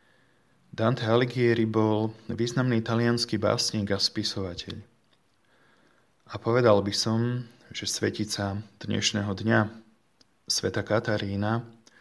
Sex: male